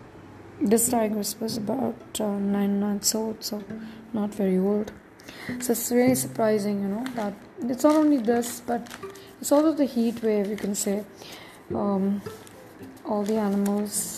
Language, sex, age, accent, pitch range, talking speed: English, female, 20-39, Indian, 200-225 Hz, 150 wpm